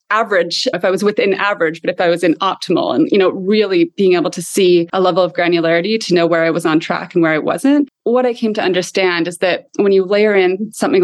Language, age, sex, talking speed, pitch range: English, 20-39, female, 255 wpm, 180-230 Hz